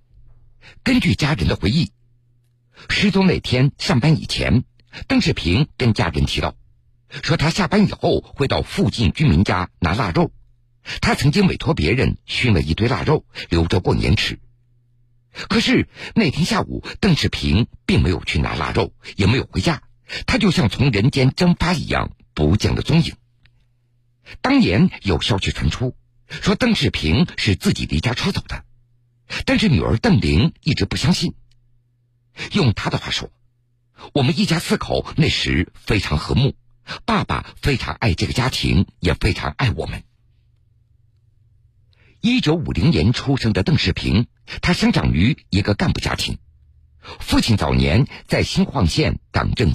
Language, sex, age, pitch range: Chinese, male, 50-69, 110-140 Hz